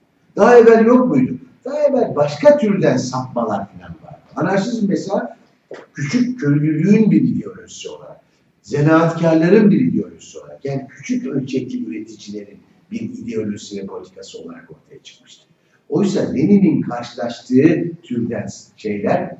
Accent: native